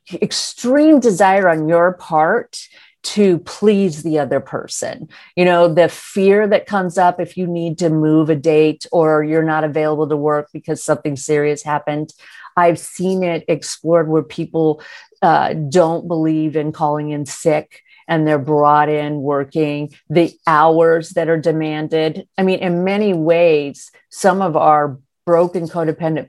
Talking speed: 155 wpm